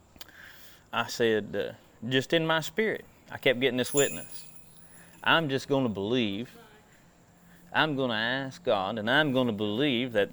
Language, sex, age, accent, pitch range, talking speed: English, male, 30-49, American, 110-160 Hz, 165 wpm